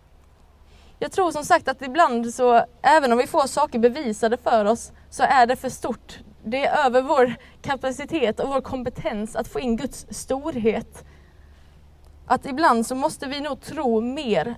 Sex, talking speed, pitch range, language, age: female, 170 wpm, 200-255 Hz, Swedish, 20-39